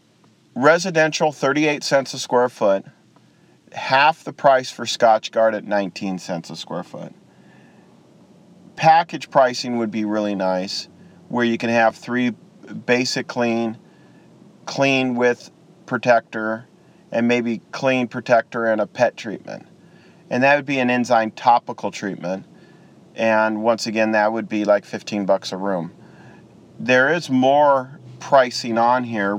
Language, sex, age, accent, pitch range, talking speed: English, male, 40-59, American, 110-145 Hz, 135 wpm